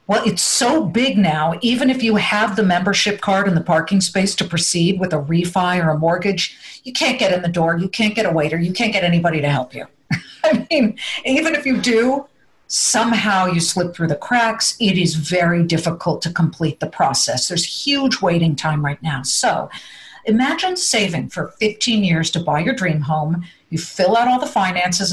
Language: English